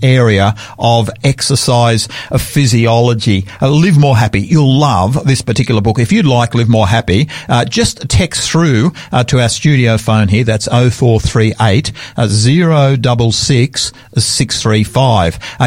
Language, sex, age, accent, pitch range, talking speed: English, male, 50-69, Australian, 115-160 Hz, 120 wpm